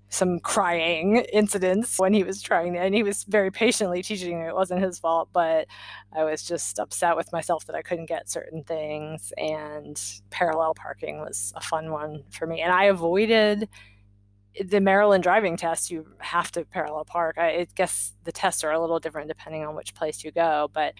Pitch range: 160-205 Hz